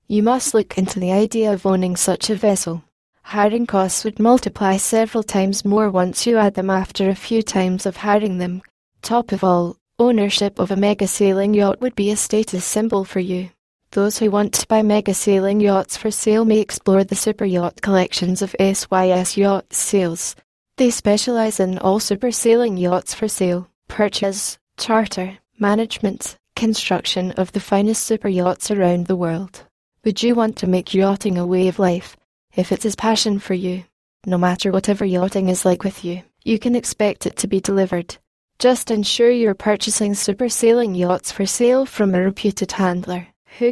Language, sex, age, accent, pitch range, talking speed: English, female, 10-29, British, 190-220 Hz, 175 wpm